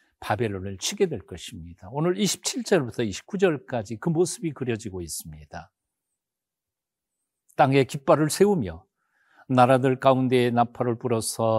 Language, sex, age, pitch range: Korean, male, 50-69, 110-170 Hz